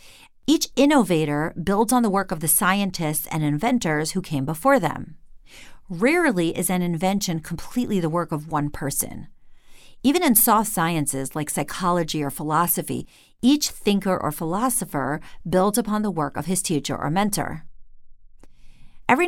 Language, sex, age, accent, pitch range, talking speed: English, female, 40-59, American, 155-205 Hz, 145 wpm